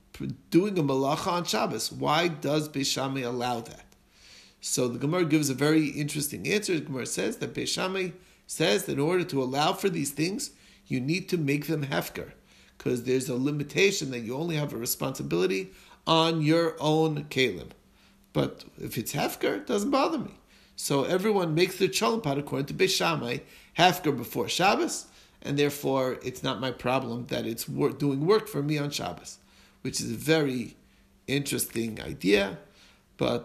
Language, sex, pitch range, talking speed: English, male, 130-170 Hz, 165 wpm